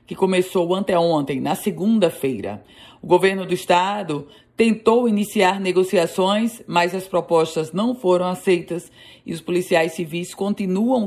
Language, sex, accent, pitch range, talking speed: Portuguese, female, Brazilian, 160-195 Hz, 130 wpm